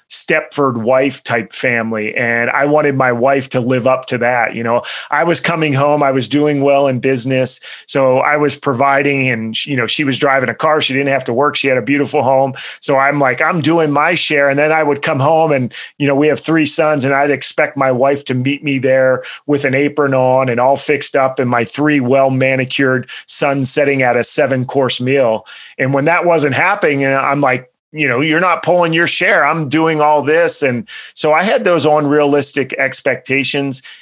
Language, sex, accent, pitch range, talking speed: English, male, American, 130-150 Hz, 215 wpm